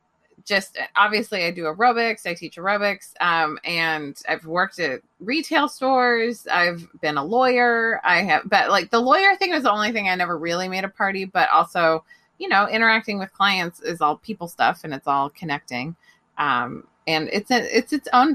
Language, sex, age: English, female, 20-39